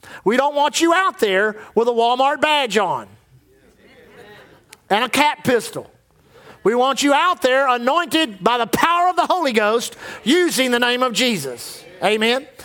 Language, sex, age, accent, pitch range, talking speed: English, male, 50-69, American, 225-300 Hz, 160 wpm